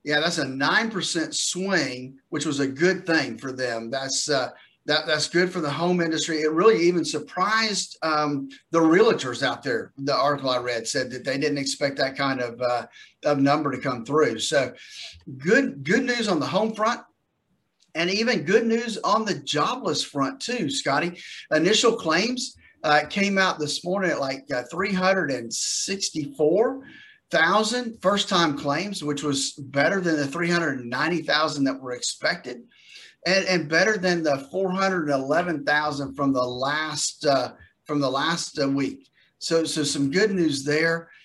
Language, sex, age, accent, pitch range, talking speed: English, male, 40-59, American, 140-180 Hz, 175 wpm